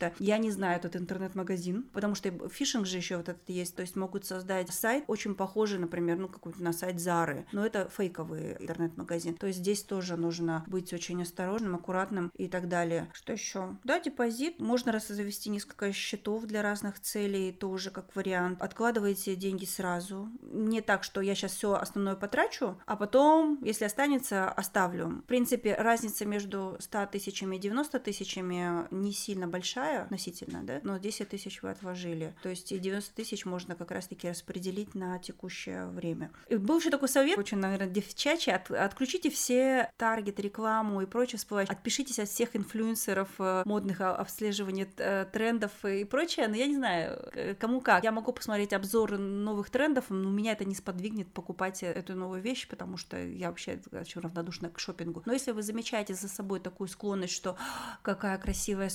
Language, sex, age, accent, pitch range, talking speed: Russian, female, 30-49, native, 185-220 Hz, 170 wpm